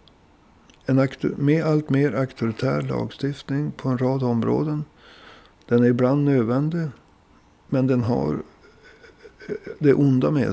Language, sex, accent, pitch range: Swedish, male, native, 120-150 Hz